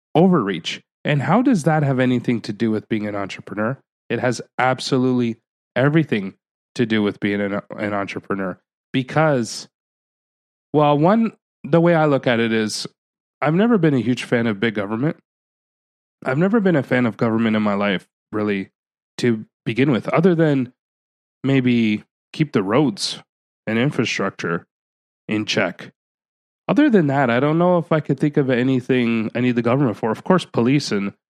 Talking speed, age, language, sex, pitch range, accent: 170 wpm, 30-49, English, male, 110-140 Hz, American